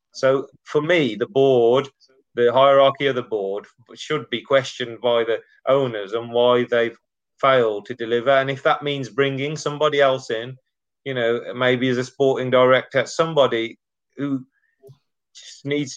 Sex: male